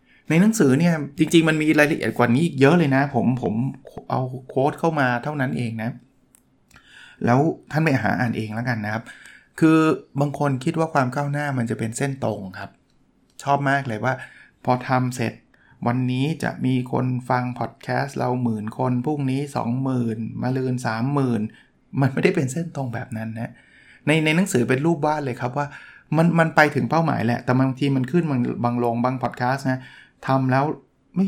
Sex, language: male, Thai